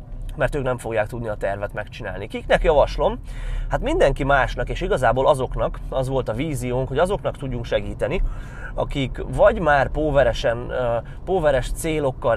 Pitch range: 110-135 Hz